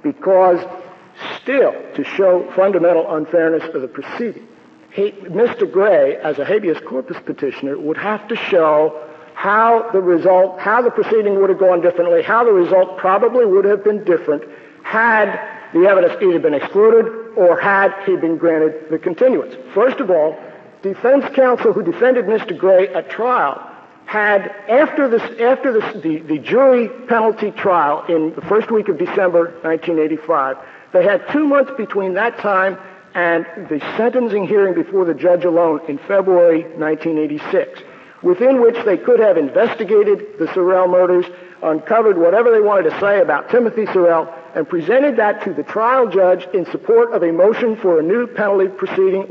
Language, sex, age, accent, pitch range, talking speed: English, male, 60-79, American, 170-235 Hz, 160 wpm